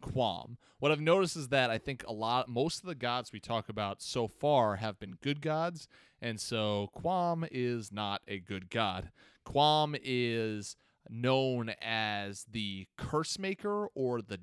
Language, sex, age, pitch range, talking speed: English, male, 30-49, 105-130 Hz, 165 wpm